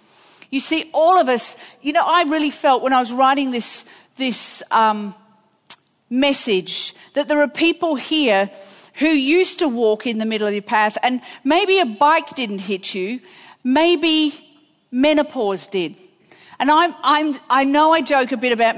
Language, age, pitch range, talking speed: English, 50-69, 225-300 Hz, 170 wpm